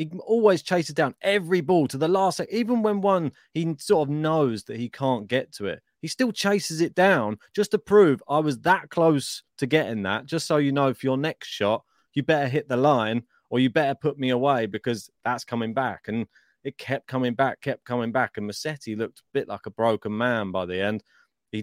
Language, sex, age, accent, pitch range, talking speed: English, male, 20-39, British, 110-145 Hz, 230 wpm